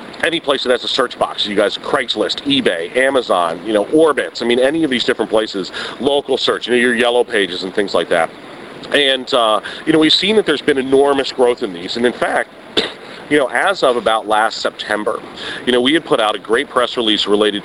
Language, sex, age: English, male, 40-59